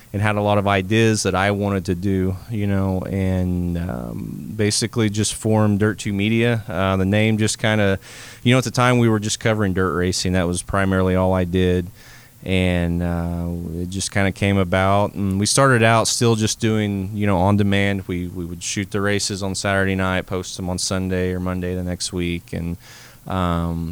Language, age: English, 30-49